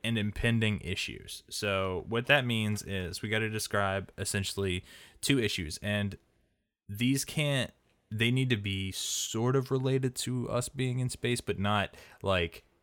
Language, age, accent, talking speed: English, 20-39, American, 155 wpm